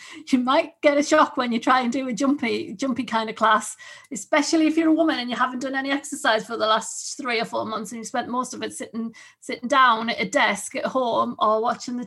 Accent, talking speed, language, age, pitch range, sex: British, 255 wpm, English, 40-59, 225-280 Hz, female